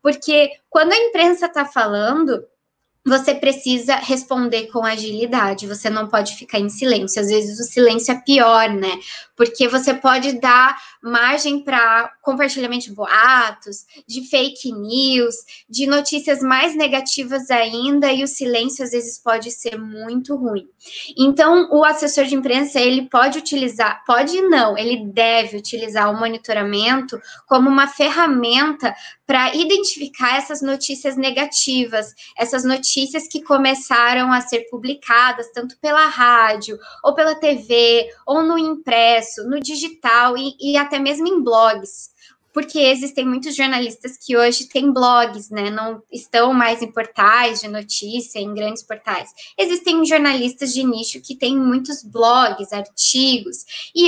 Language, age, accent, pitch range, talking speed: Portuguese, 20-39, Brazilian, 230-280 Hz, 140 wpm